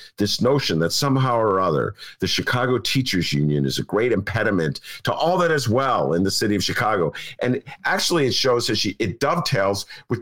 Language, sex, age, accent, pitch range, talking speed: English, male, 50-69, American, 95-140 Hz, 195 wpm